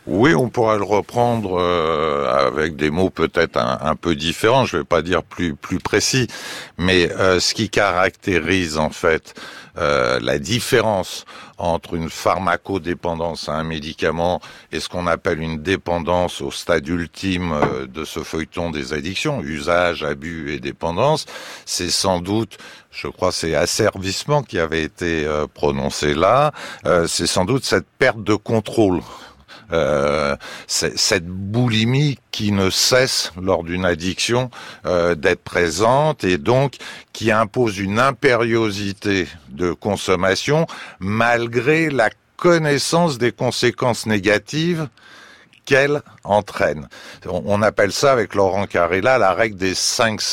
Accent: French